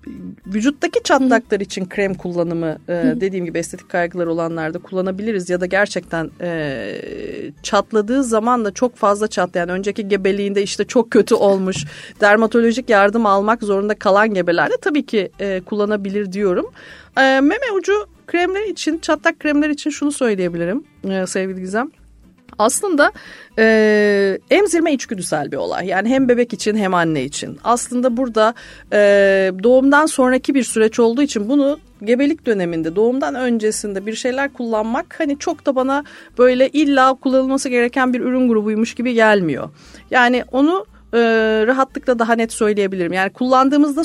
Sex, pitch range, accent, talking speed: female, 195-265 Hz, native, 135 wpm